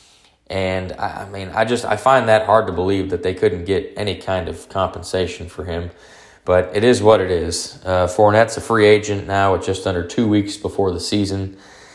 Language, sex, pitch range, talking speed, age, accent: English, male, 90-110 Hz, 205 wpm, 20-39, American